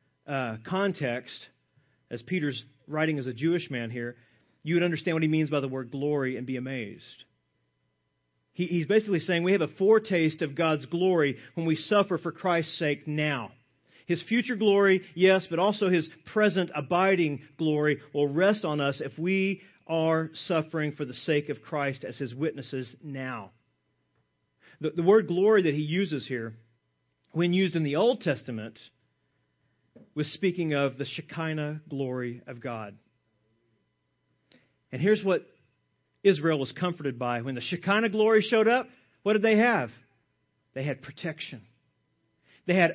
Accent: American